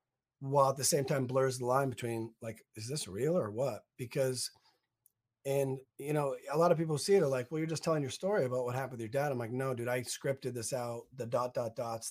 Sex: male